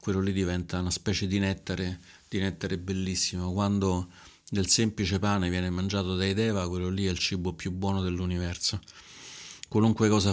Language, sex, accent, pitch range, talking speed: Italian, male, native, 90-105 Hz, 165 wpm